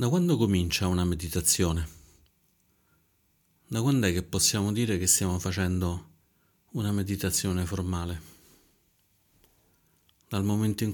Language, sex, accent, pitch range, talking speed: Italian, male, native, 90-105 Hz, 110 wpm